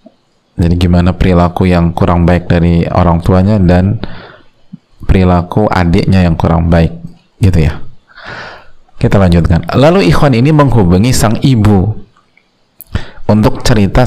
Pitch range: 90-110 Hz